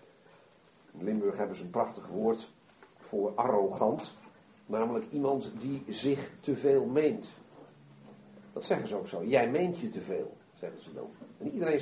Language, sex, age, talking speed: Dutch, male, 50-69, 155 wpm